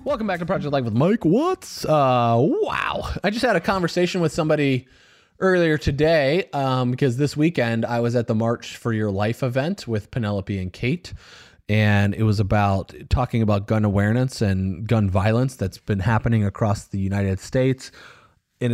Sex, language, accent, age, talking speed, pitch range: male, English, American, 30-49, 175 wpm, 105-135 Hz